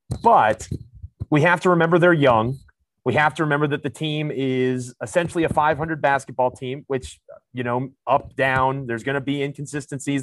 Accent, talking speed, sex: American, 175 wpm, male